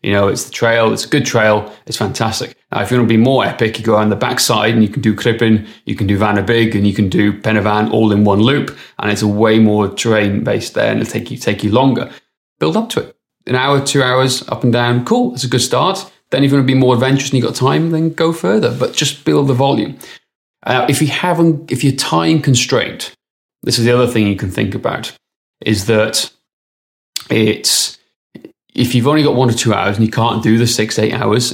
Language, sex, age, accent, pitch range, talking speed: English, male, 30-49, British, 110-130 Hz, 245 wpm